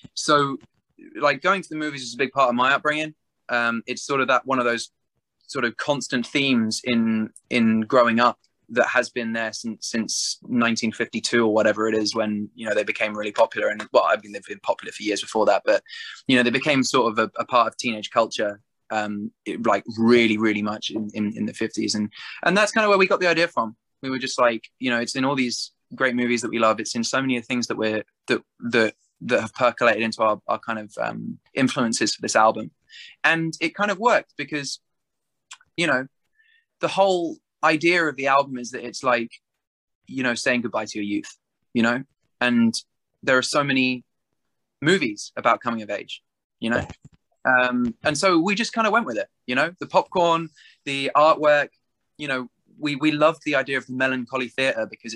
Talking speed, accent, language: 215 wpm, British, English